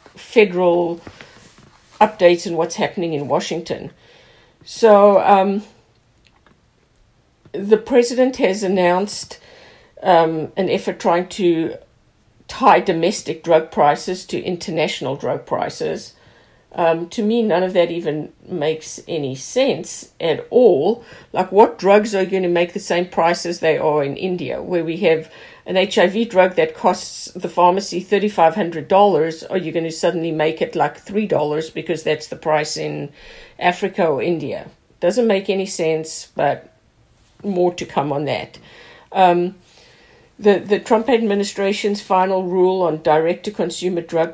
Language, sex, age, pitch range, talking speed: English, female, 50-69, 160-200 Hz, 135 wpm